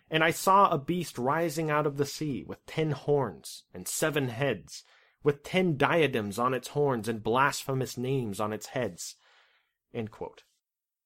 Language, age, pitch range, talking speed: English, 30-49, 125-170 Hz, 155 wpm